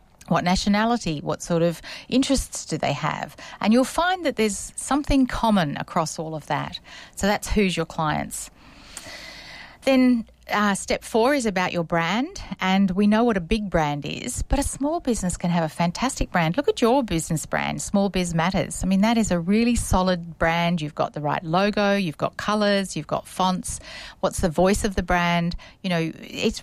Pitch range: 165-215 Hz